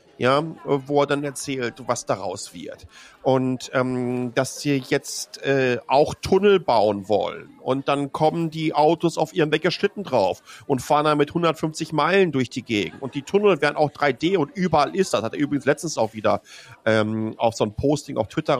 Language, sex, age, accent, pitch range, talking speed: German, male, 40-59, German, 140-215 Hz, 190 wpm